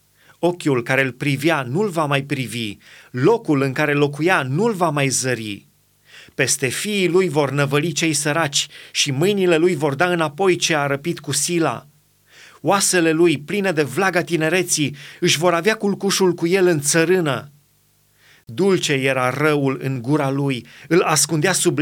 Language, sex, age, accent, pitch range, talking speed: Romanian, male, 30-49, native, 140-175 Hz, 155 wpm